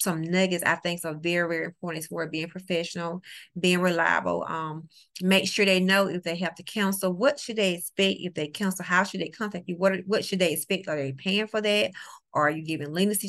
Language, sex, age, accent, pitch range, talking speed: English, female, 30-49, American, 170-195 Hz, 230 wpm